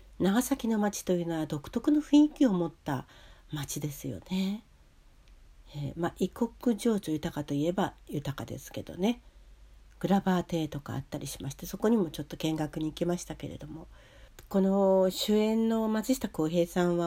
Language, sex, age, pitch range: Japanese, female, 60-79, 145-195 Hz